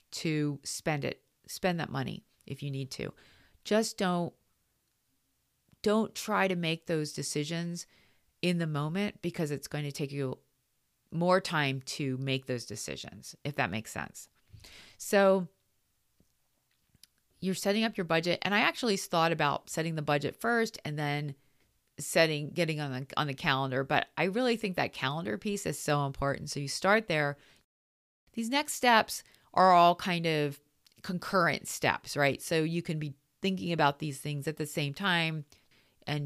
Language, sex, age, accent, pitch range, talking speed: English, female, 40-59, American, 140-180 Hz, 160 wpm